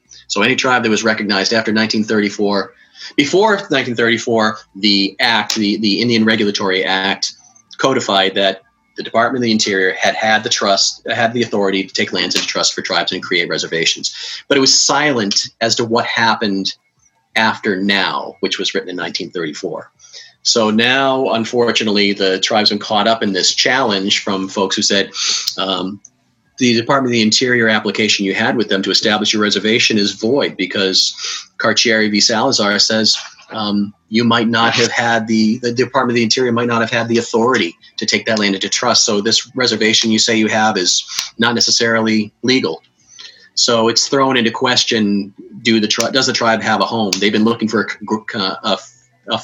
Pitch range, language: 100-115 Hz, English